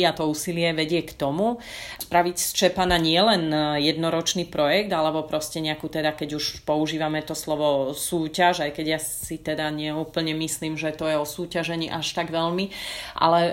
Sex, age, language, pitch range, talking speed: female, 30-49, Slovak, 165-185 Hz, 175 wpm